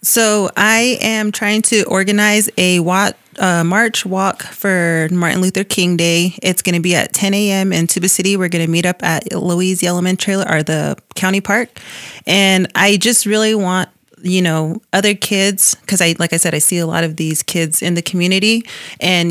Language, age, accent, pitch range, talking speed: English, 30-49, American, 160-190 Hz, 195 wpm